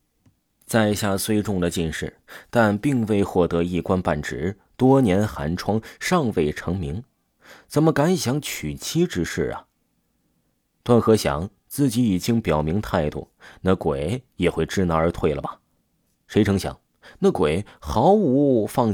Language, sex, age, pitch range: Chinese, male, 30-49, 85-120 Hz